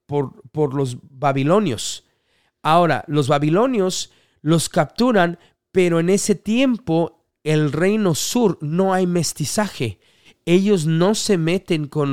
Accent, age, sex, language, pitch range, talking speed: Mexican, 40-59, male, English, 145-185 Hz, 120 wpm